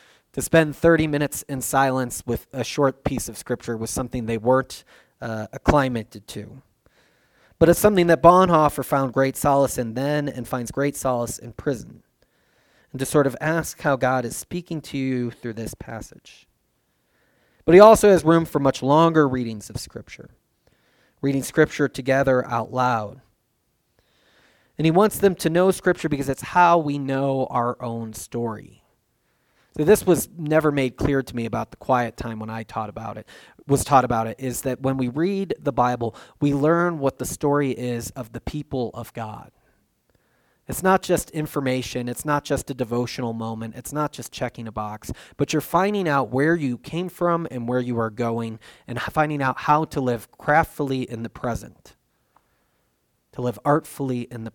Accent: American